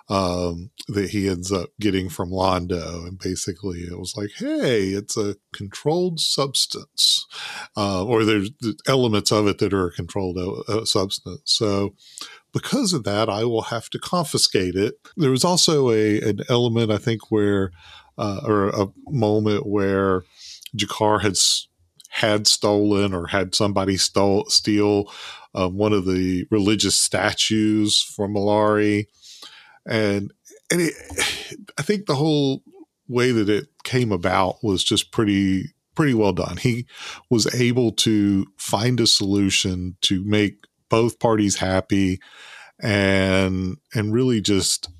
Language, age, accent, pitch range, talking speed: English, 40-59, American, 95-115 Hz, 140 wpm